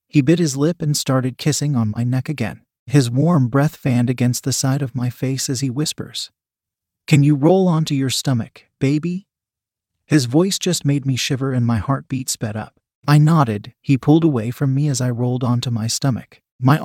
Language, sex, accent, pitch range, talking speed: English, male, American, 120-150 Hz, 200 wpm